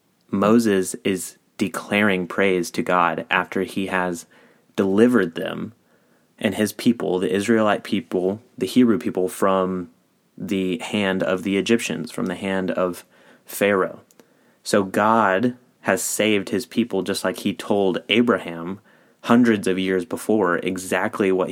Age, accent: 30-49, American